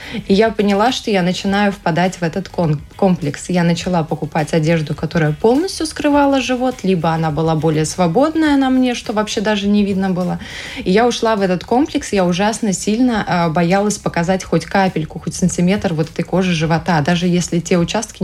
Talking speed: 180 wpm